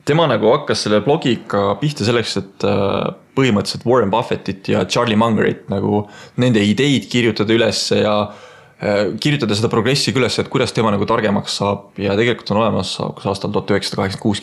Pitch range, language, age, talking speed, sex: 105-125 Hz, English, 20-39, 160 wpm, male